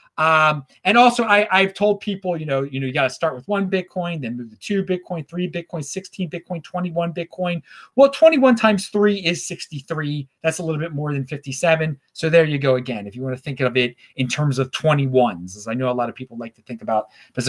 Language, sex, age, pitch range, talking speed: English, male, 30-49, 140-210 Hz, 240 wpm